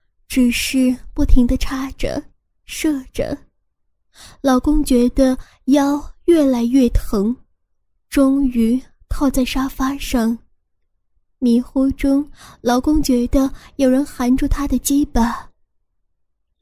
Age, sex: 10-29, female